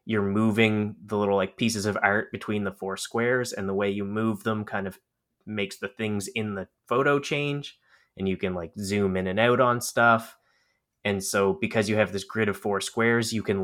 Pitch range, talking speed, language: 95-110 Hz, 215 wpm, English